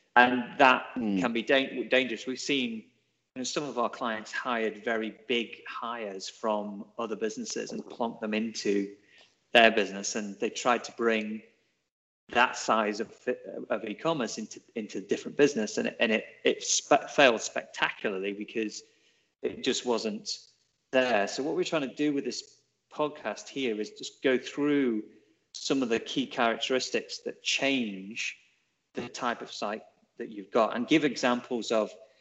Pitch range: 105-135 Hz